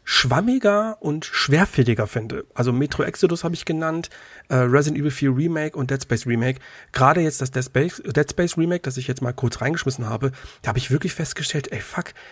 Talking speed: 200 wpm